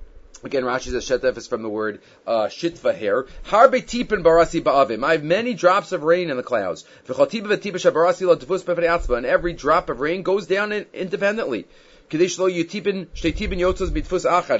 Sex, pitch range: male, 150-200 Hz